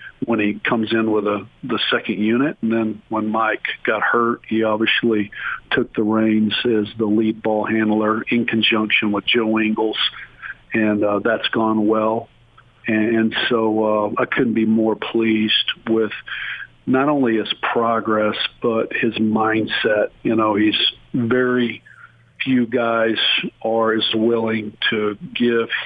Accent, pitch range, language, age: American, 110-115 Hz, English, 50-69